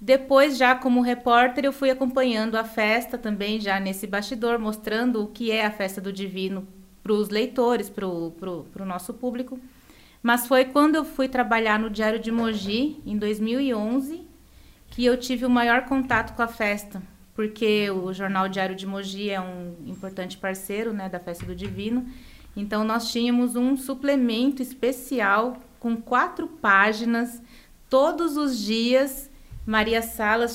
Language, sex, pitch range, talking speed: Portuguese, female, 195-245 Hz, 155 wpm